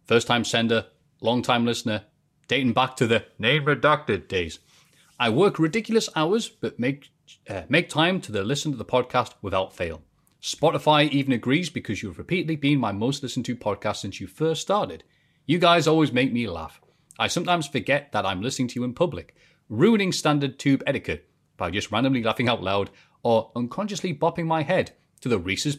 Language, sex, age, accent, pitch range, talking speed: English, male, 30-49, British, 110-155 Hz, 175 wpm